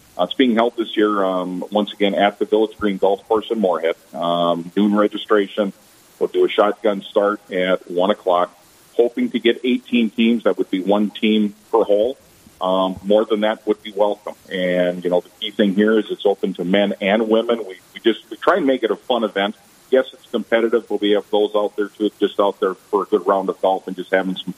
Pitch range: 95-110 Hz